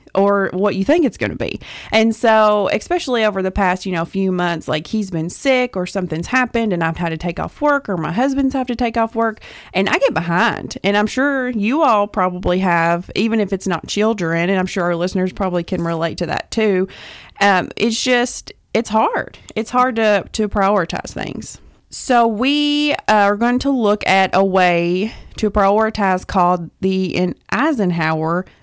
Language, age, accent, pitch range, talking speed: English, 30-49, American, 180-230 Hz, 195 wpm